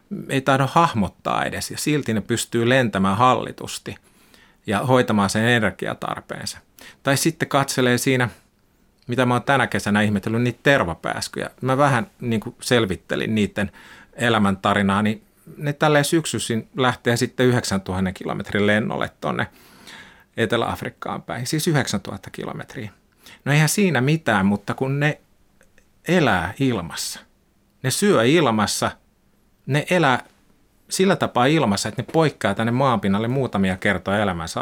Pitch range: 105-145 Hz